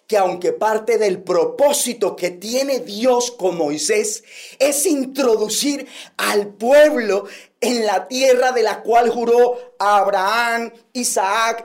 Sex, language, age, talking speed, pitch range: male, Spanish, 40-59, 120 wpm, 225-300 Hz